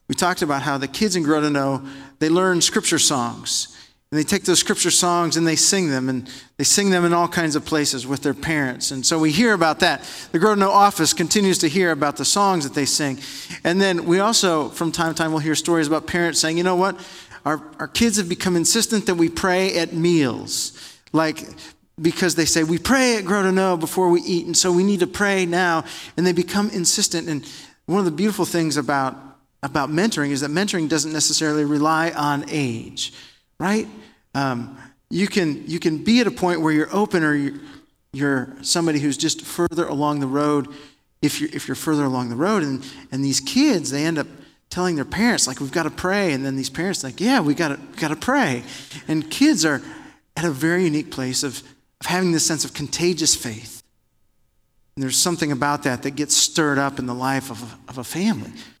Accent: American